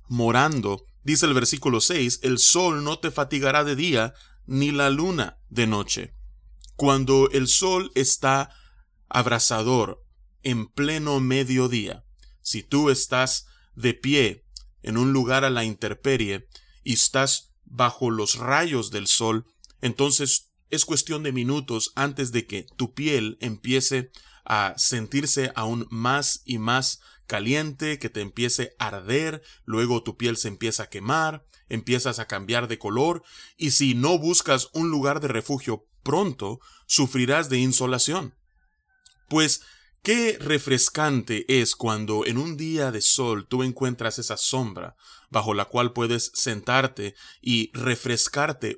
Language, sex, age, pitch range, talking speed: Spanish, male, 30-49, 115-140 Hz, 135 wpm